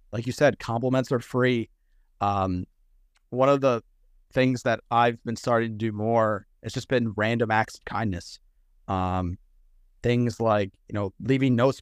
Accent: American